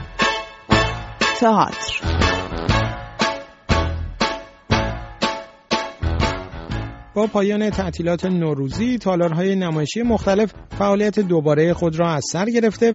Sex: male